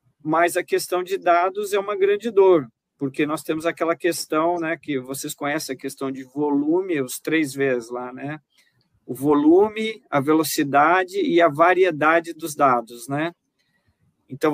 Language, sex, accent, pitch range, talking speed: Portuguese, male, Brazilian, 140-180 Hz, 155 wpm